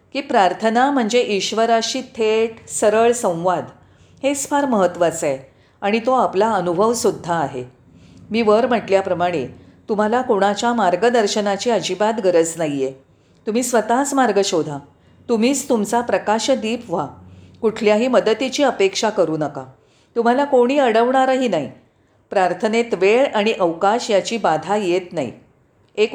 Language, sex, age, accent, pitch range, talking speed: Marathi, female, 40-59, native, 180-250 Hz, 115 wpm